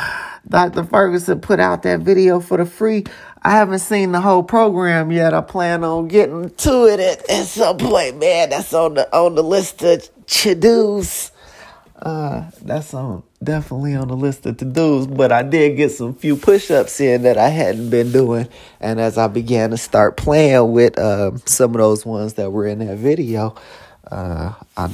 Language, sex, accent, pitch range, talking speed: English, male, American, 110-170 Hz, 185 wpm